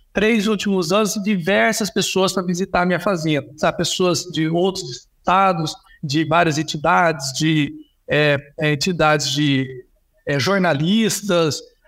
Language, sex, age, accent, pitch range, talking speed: Portuguese, male, 60-79, Brazilian, 165-220 Hz, 120 wpm